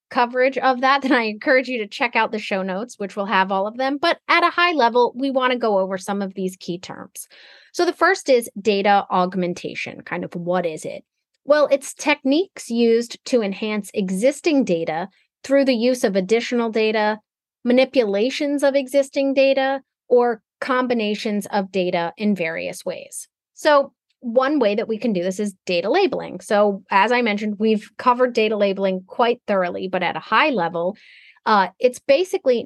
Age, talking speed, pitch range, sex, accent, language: 30-49, 180 wpm, 200-265 Hz, female, American, English